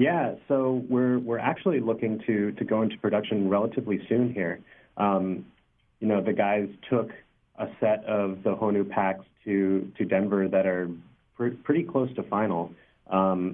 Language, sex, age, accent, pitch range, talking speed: English, male, 30-49, American, 90-105 Hz, 165 wpm